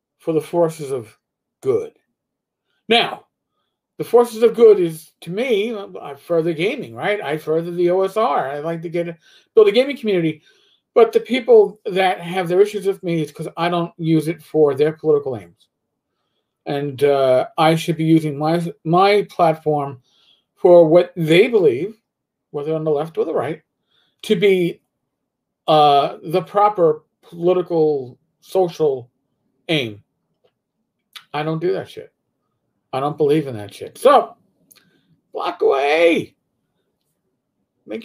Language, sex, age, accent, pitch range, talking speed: English, male, 50-69, American, 155-210 Hz, 145 wpm